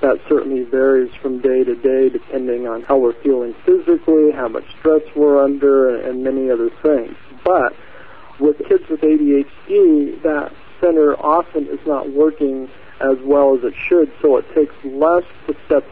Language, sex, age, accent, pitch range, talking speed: English, male, 50-69, American, 135-165 Hz, 165 wpm